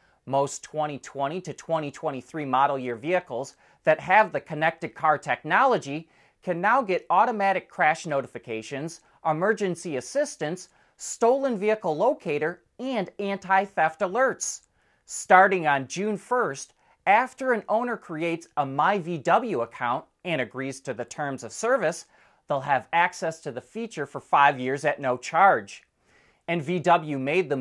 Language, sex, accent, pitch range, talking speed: English, male, American, 135-185 Hz, 135 wpm